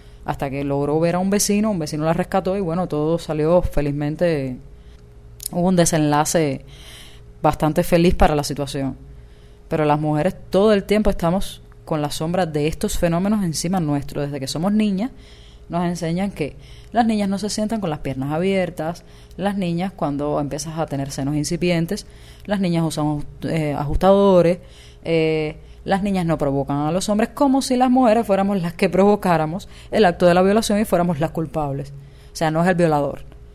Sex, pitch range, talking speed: female, 145-185 Hz, 175 wpm